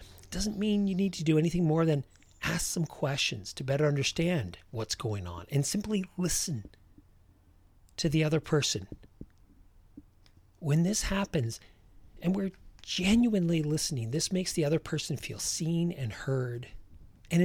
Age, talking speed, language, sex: 40-59, 145 wpm, English, male